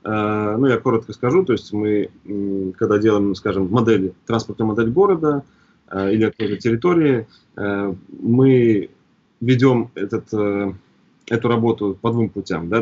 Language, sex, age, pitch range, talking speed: Russian, male, 20-39, 100-125 Hz, 110 wpm